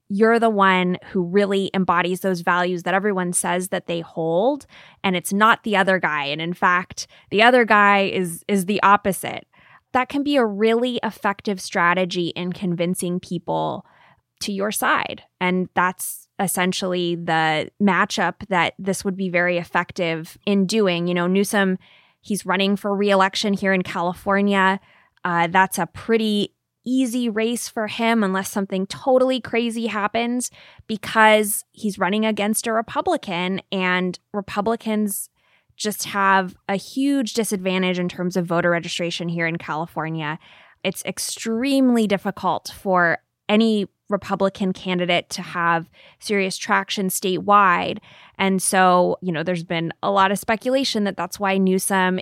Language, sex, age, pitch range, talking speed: English, female, 20-39, 180-210 Hz, 145 wpm